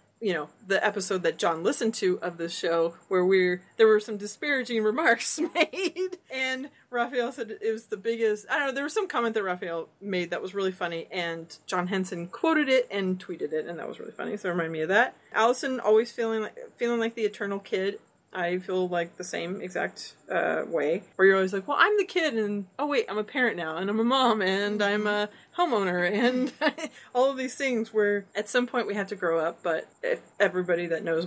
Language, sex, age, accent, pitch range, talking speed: English, female, 30-49, American, 185-255 Hz, 225 wpm